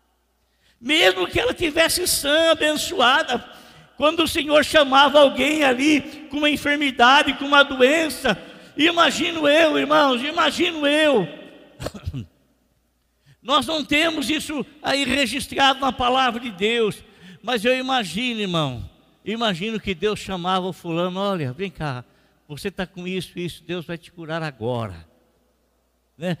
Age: 60-79